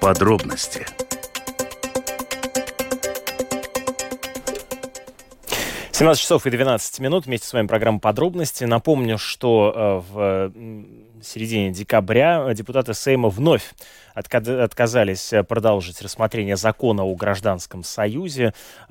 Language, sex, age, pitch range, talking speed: Russian, male, 20-39, 95-125 Hz, 85 wpm